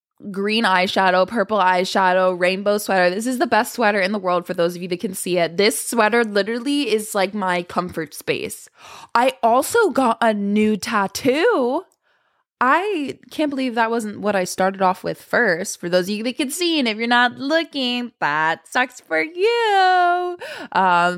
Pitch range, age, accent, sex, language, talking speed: 175-230 Hz, 10-29, American, female, English, 180 wpm